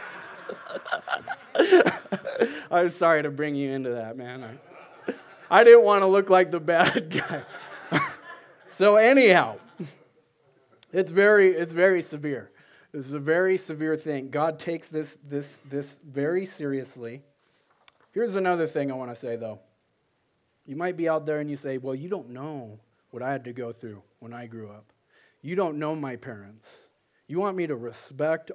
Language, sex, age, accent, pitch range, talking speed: English, male, 30-49, American, 135-165 Hz, 165 wpm